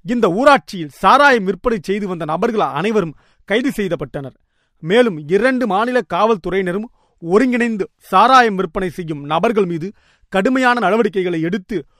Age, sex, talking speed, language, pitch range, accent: 40-59, male, 115 wpm, Tamil, 170-230 Hz, native